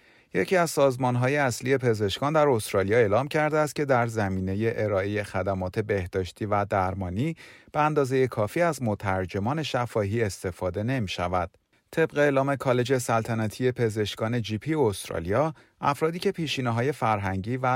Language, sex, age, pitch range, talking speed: Persian, male, 30-49, 95-135 Hz, 135 wpm